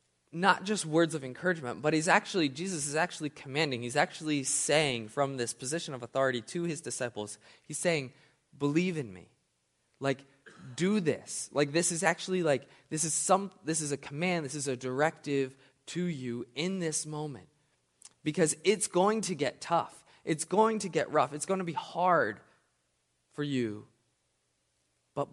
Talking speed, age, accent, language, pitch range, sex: 170 wpm, 20-39, American, English, 130-170 Hz, male